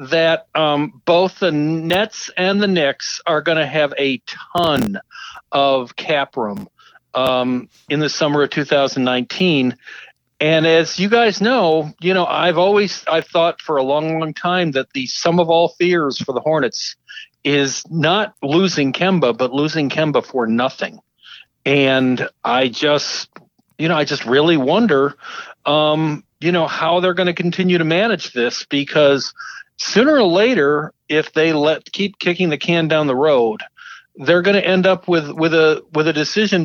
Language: English